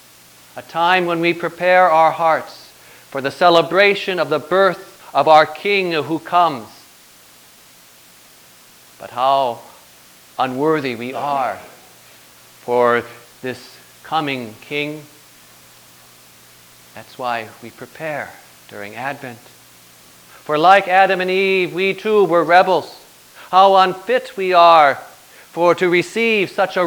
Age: 40-59